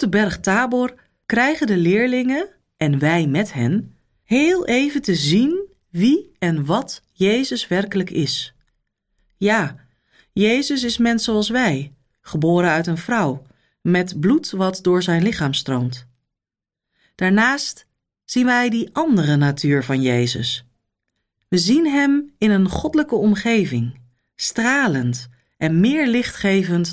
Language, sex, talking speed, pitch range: Dutch, female, 125 wpm, 140-230 Hz